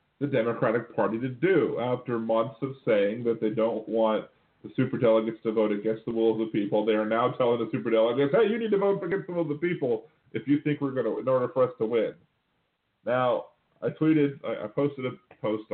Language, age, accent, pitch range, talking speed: English, 40-59, American, 110-150 Hz, 230 wpm